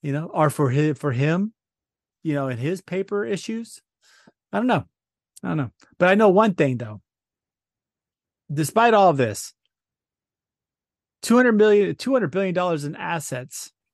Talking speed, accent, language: 150 wpm, American, English